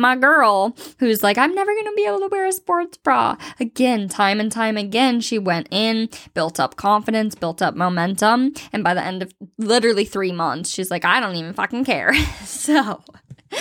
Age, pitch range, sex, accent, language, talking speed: 10-29, 190-220 Hz, female, American, English, 200 wpm